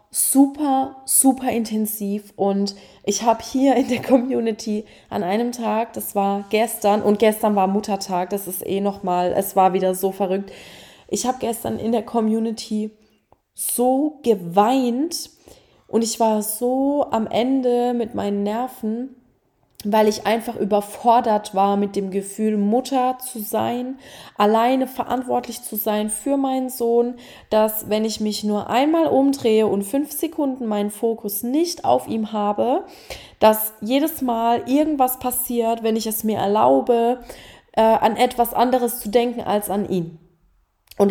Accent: German